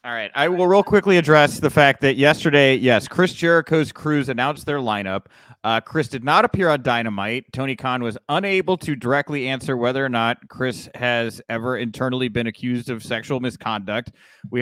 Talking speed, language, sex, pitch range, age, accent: 185 wpm, English, male, 120-160 Hz, 30-49, American